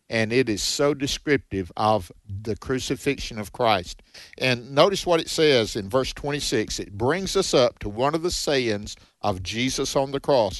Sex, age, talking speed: male, 50-69, 180 wpm